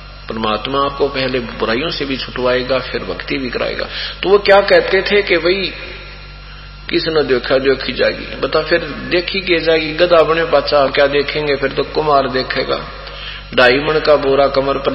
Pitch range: 130-165 Hz